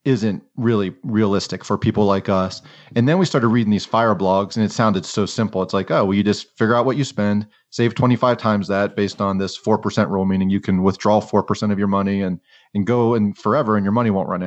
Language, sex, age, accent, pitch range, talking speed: English, male, 30-49, American, 95-115 Hz, 240 wpm